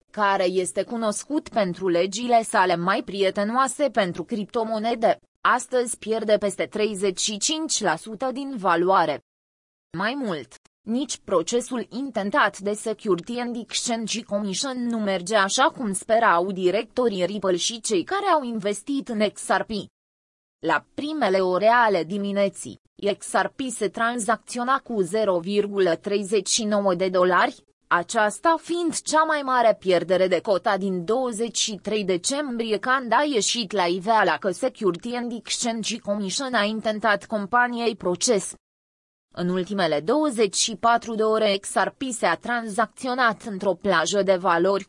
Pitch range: 195-240 Hz